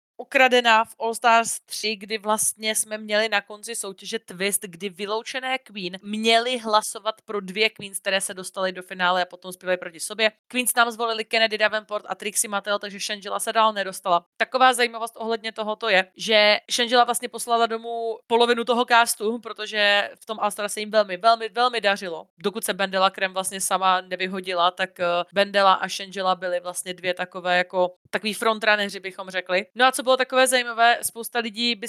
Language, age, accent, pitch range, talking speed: Czech, 20-39, native, 190-225 Hz, 180 wpm